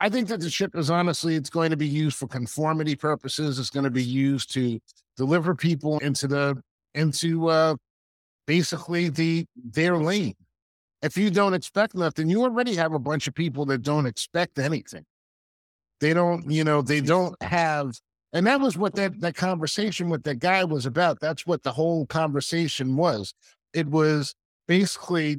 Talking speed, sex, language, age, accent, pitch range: 175 wpm, male, English, 50-69, American, 145-185 Hz